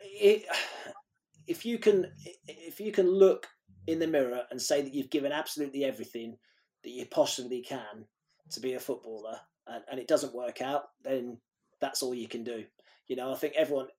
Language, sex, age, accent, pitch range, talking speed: English, male, 30-49, British, 120-150 Hz, 185 wpm